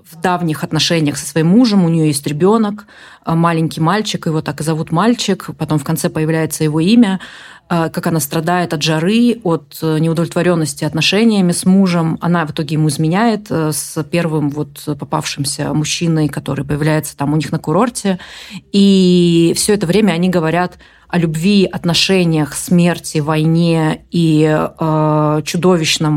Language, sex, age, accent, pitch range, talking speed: Russian, female, 20-39, native, 155-175 Hz, 145 wpm